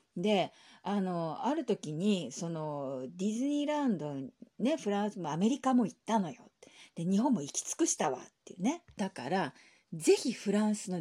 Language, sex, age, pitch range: Japanese, female, 40-59, 165-235 Hz